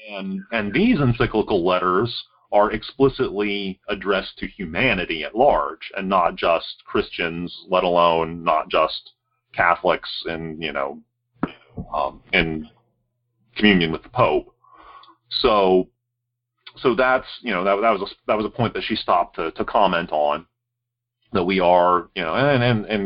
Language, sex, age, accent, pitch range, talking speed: English, male, 40-59, American, 90-120 Hz, 150 wpm